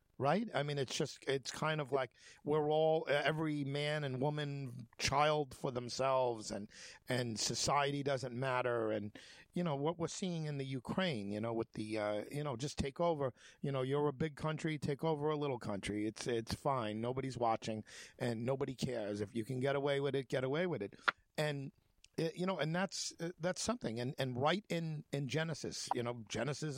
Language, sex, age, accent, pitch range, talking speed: English, male, 50-69, American, 115-150 Hz, 200 wpm